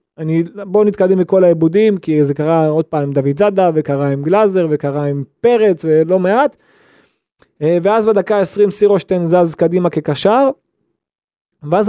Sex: male